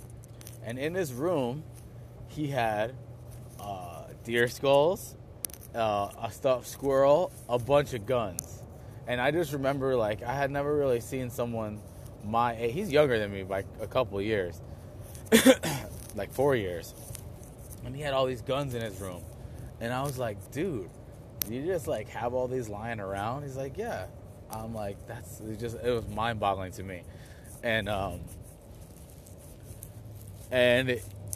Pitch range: 110-130 Hz